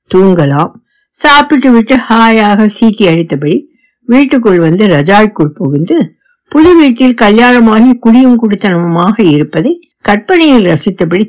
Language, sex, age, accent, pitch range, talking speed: Tamil, female, 60-79, native, 170-265 Hz, 95 wpm